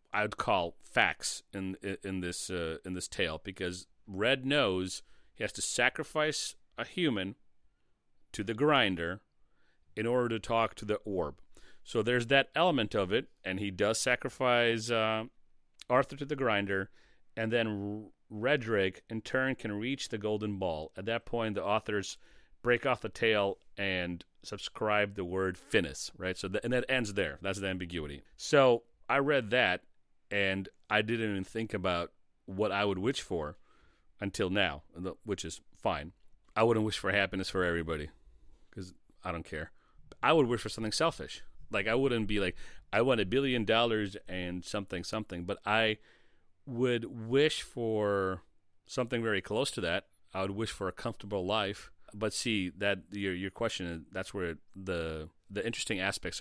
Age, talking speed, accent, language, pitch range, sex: 40-59, 170 wpm, American, English, 90-115 Hz, male